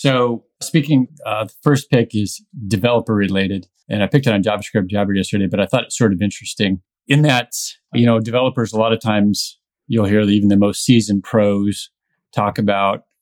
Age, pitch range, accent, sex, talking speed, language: 30-49, 100-120 Hz, American, male, 190 wpm, English